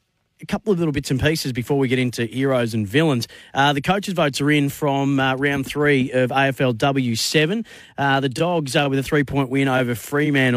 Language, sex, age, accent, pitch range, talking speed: English, male, 30-49, Australian, 120-145 Hz, 210 wpm